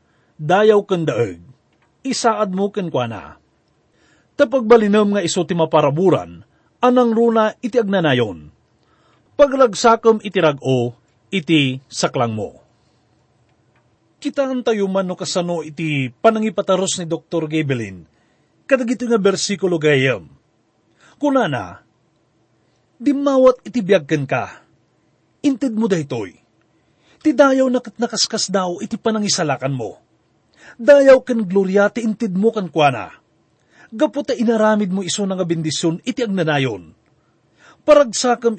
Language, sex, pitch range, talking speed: English, male, 160-245 Hz, 105 wpm